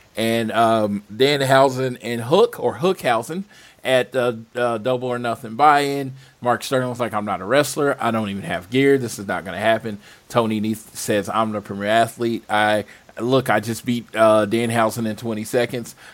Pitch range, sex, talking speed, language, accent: 110-130 Hz, male, 200 wpm, English, American